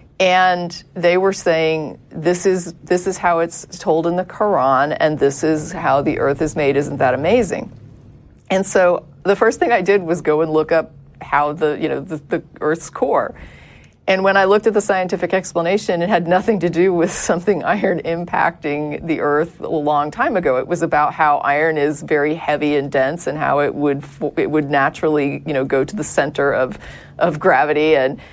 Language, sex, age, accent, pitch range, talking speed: English, female, 40-59, American, 155-185 Hz, 200 wpm